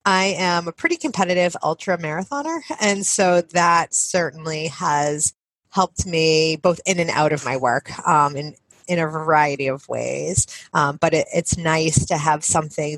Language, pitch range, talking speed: English, 155-200 Hz, 165 wpm